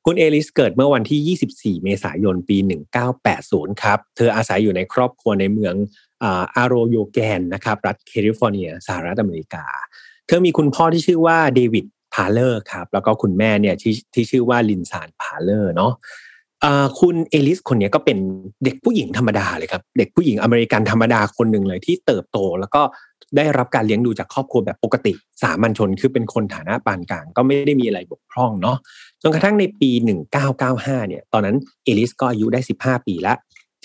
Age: 30-49